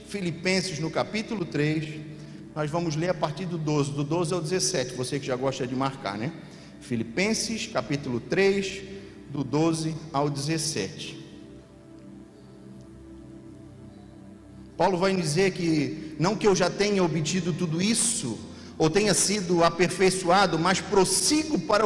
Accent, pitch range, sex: Brazilian, 155-205 Hz, male